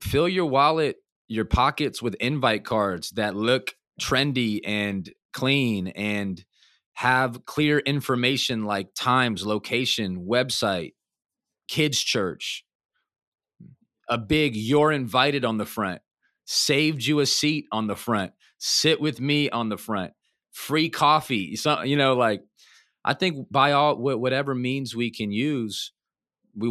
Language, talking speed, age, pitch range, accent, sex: English, 130 wpm, 30-49, 105-130 Hz, American, male